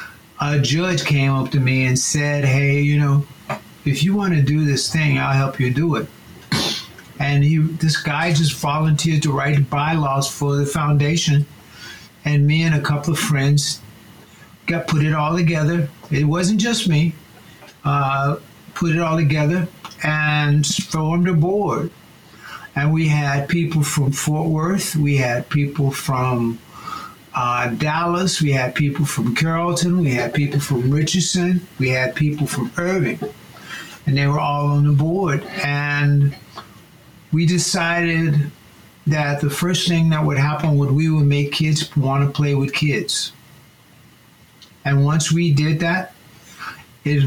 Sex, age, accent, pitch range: male, 60-79, American, 140-165 Hz